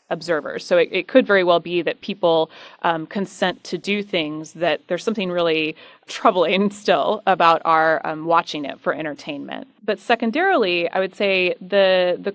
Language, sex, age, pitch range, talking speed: English, female, 20-39, 165-210 Hz, 170 wpm